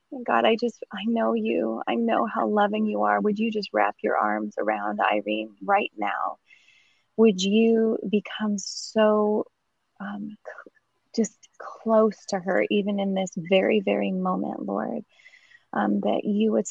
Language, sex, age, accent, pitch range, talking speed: English, female, 20-39, American, 185-215 Hz, 150 wpm